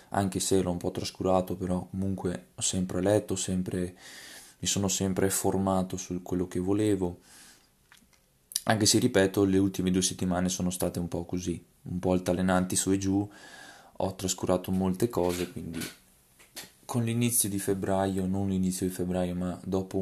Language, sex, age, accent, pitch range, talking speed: Italian, male, 20-39, native, 90-100 Hz, 160 wpm